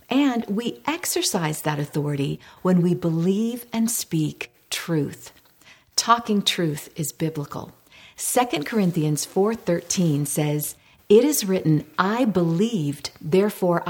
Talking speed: 110 wpm